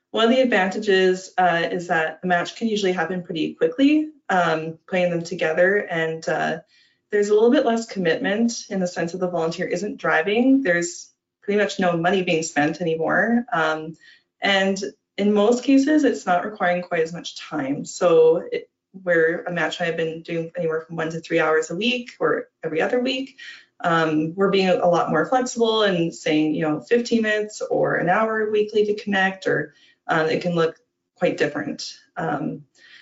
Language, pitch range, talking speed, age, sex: English, 170-230 Hz, 185 wpm, 20-39, female